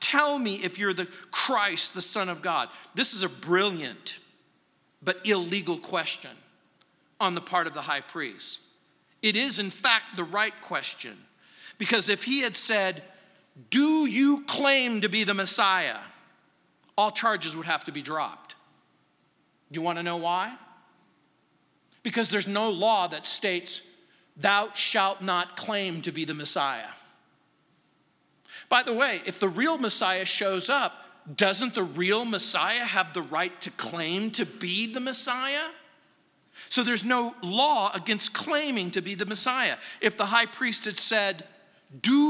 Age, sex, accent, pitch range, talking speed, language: 40-59, male, American, 180-235 Hz, 155 wpm, English